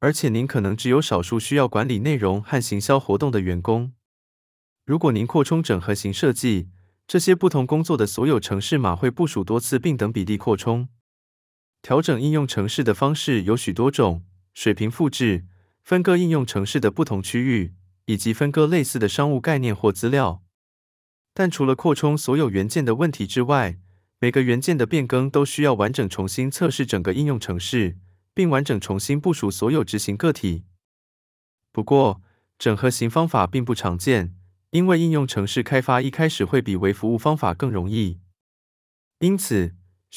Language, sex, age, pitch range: Chinese, male, 20-39, 100-140 Hz